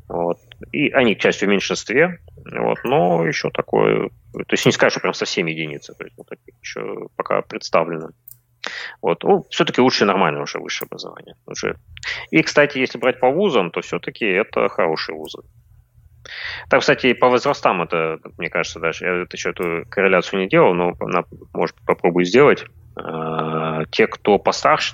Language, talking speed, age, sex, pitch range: Russian, 160 wpm, 30-49, male, 85-120 Hz